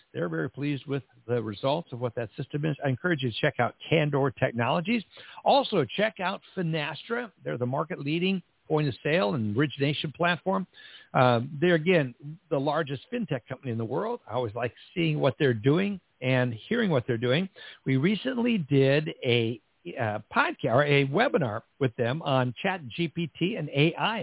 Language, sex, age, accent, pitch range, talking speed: English, male, 60-79, American, 130-170 Hz, 170 wpm